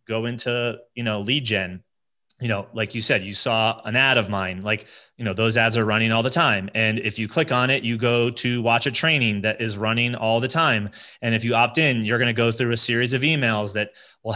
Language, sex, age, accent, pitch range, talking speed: English, male, 30-49, American, 115-135 Hz, 250 wpm